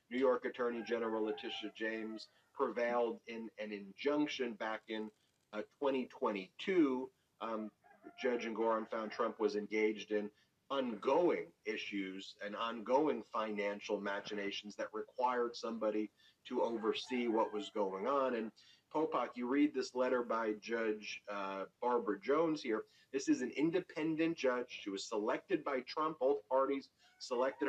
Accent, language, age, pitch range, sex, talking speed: American, English, 40-59, 110-150 Hz, male, 135 wpm